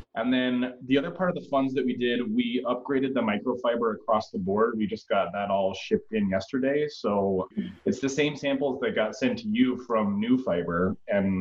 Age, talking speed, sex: 20-39, 210 wpm, male